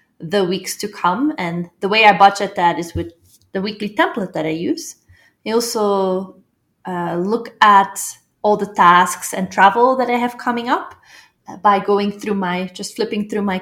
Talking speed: 180 wpm